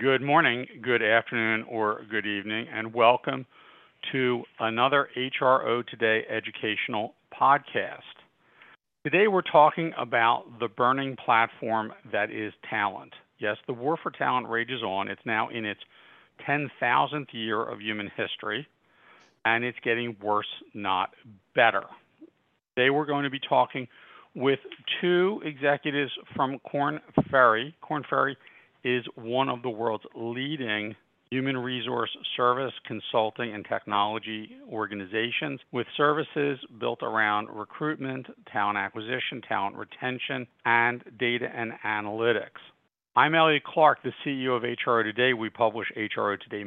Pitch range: 110-135 Hz